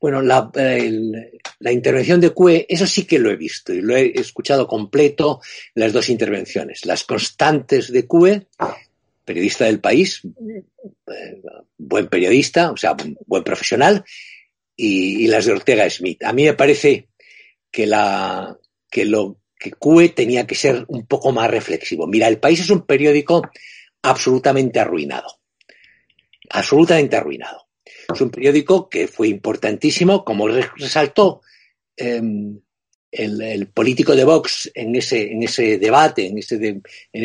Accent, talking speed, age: Spanish, 145 wpm, 60-79